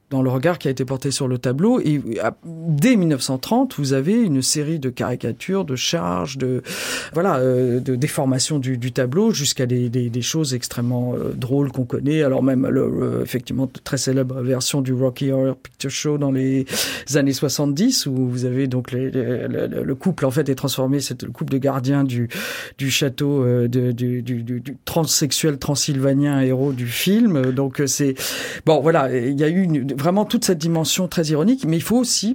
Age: 50-69